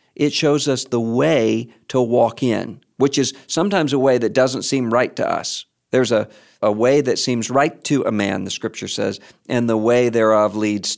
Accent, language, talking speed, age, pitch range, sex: American, English, 200 wpm, 50-69, 105-135 Hz, male